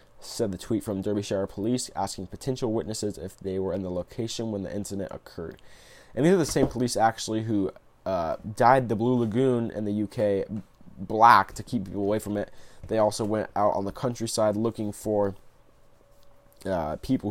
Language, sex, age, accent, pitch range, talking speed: English, male, 20-39, American, 100-120 Hz, 185 wpm